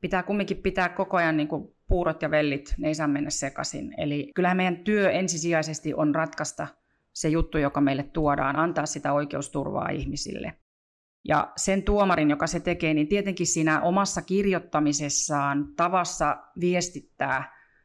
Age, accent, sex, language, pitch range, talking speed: 30-49, native, female, Finnish, 150-175 Hz, 145 wpm